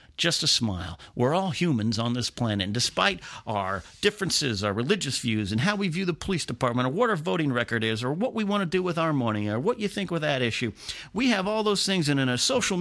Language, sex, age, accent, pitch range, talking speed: English, male, 40-59, American, 120-175 Hz, 255 wpm